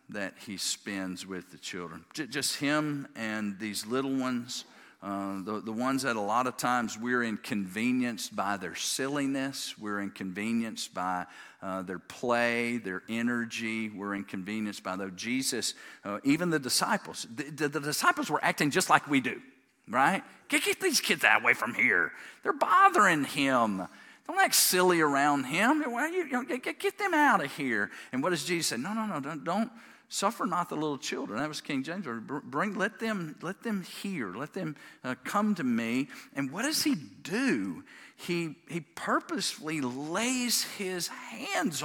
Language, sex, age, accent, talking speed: English, male, 50-69, American, 175 wpm